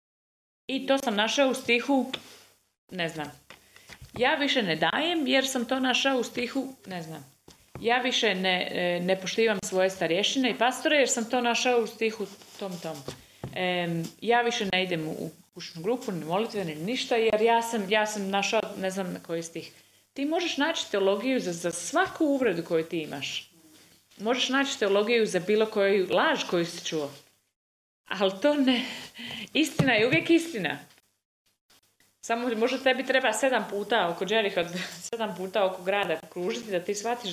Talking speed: 170 wpm